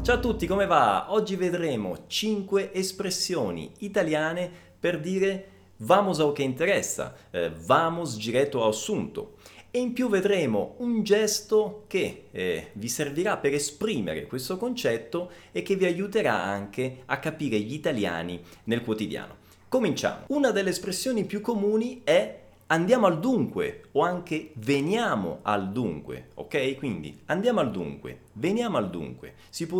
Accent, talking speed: native, 140 wpm